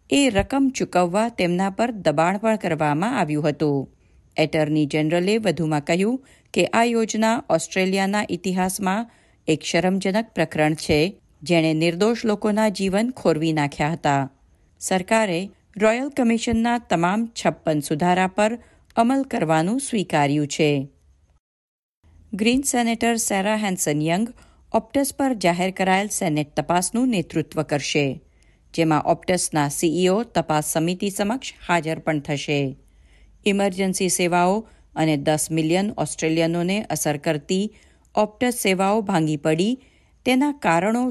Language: Gujarati